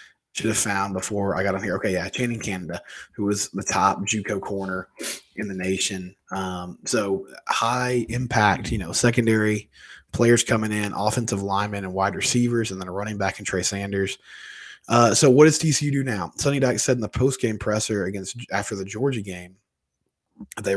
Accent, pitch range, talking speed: American, 95-110 Hz, 185 wpm